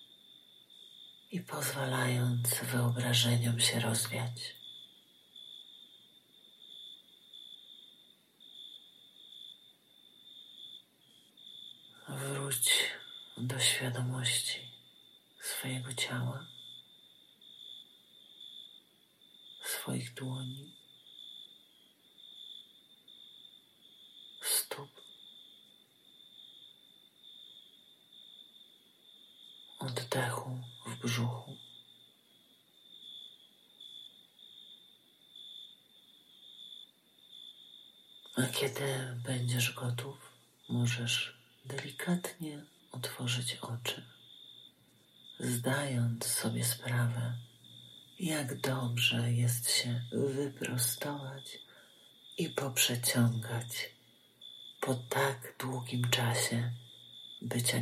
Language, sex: Polish, male